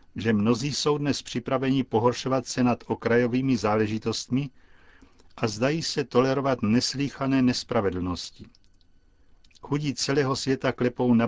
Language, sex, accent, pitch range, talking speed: Czech, male, native, 105-130 Hz, 110 wpm